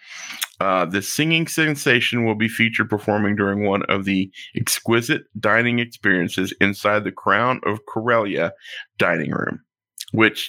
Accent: American